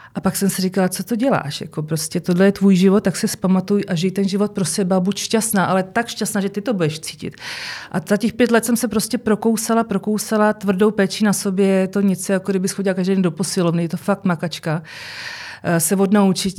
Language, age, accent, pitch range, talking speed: Czech, 40-59, native, 175-205 Hz, 230 wpm